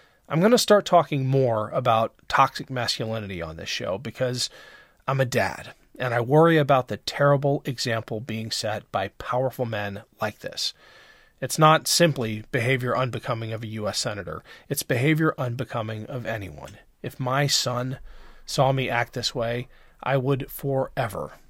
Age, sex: 40-59, male